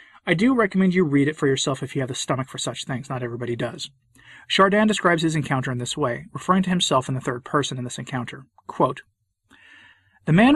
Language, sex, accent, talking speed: English, male, American, 220 wpm